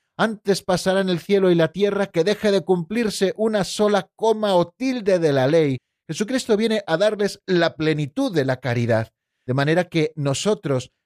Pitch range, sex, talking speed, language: 145-195 Hz, male, 175 wpm, Spanish